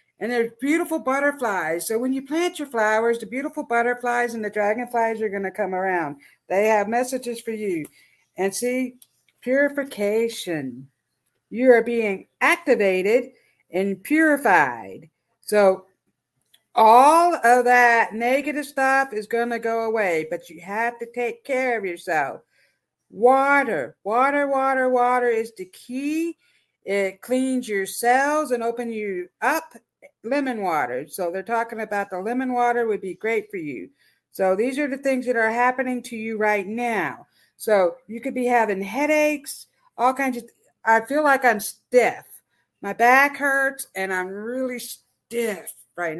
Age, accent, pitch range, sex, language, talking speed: 50-69, American, 205-260 Hz, female, English, 150 wpm